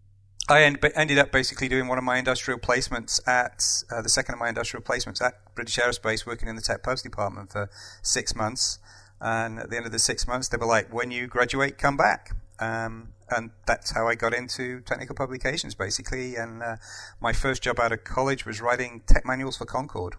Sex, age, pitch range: male, 40-59, 105-125 Hz